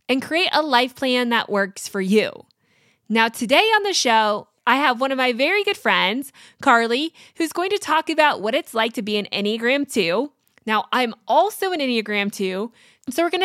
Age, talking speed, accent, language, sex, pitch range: 20-39, 200 wpm, American, English, female, 220-300 Hz